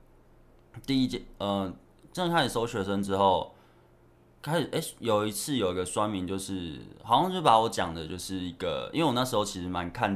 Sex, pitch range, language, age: male, 90-105 Hz, Chinese, 20-39